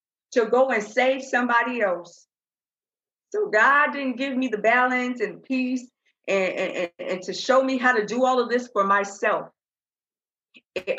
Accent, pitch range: American, 195-255 Hz